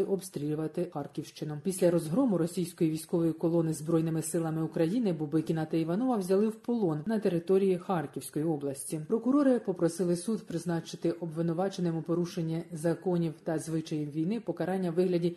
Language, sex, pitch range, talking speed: Ukrainian, female, 165-200 Hz, 130 wpm